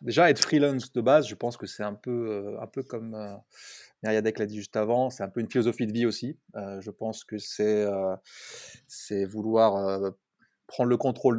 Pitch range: 105-120 Hz